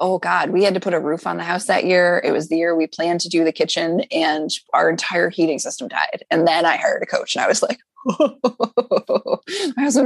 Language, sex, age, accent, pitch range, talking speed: English, female, 20-39, American, 180-265 Hz, 245 wpm